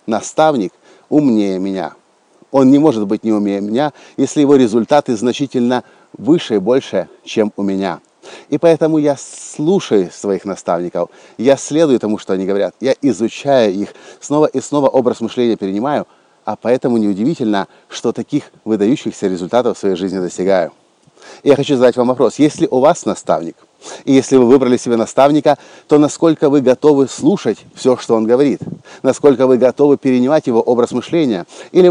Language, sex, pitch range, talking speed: Russian, male, 110-145 Hz, 160 wpm